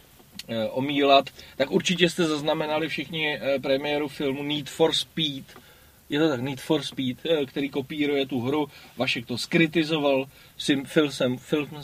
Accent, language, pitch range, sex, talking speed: native, Czech, 135-160 Hz, male, 125 wpm